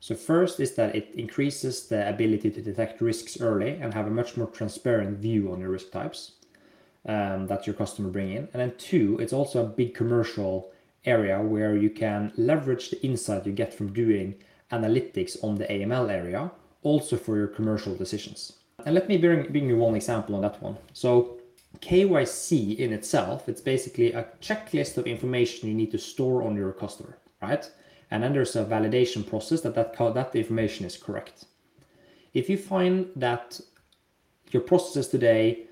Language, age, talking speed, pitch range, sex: English, 20-39, 180 wpm, 105-135 Hz, male